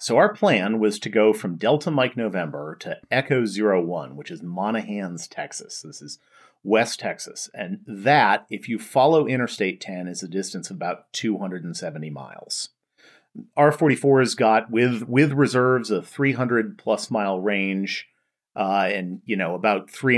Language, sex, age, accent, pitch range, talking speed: English, male, 40-59, American, 95-130 Hz, 160 wpm